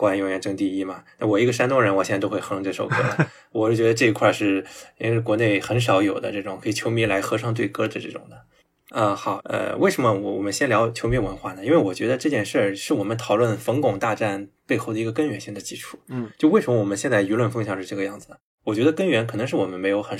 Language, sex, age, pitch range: Chinese, male, 20-39, 105-125 Hz